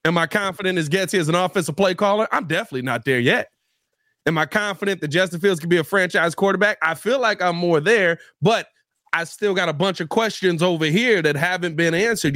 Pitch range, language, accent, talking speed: 135-175 Hz, English, American, 225 wpm